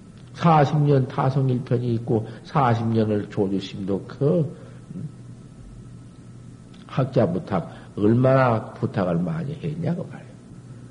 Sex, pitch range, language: male, 115-160 Hz, Korean